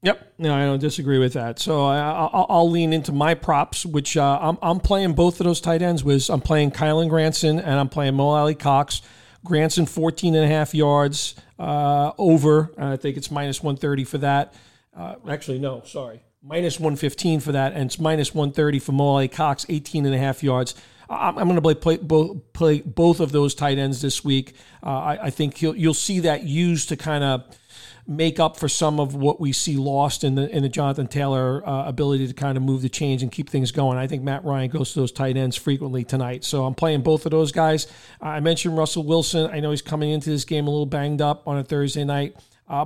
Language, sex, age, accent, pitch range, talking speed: English, male, 40-59, American, 135-160 Hz, 225 wpm